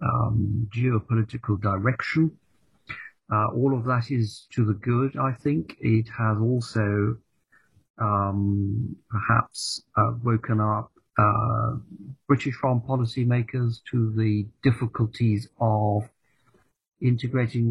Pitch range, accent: 105-120 Hz, British